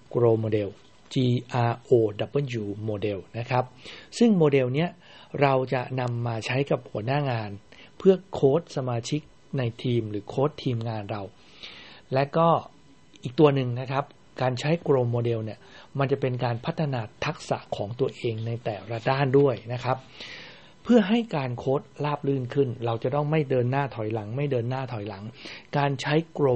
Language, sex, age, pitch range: English, male, 60-79, 115-145 Hz